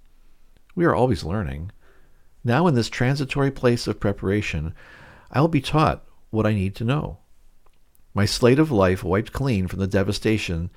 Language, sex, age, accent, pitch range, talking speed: English, male, 50-69, American, 85-110 Hz, 160 wpm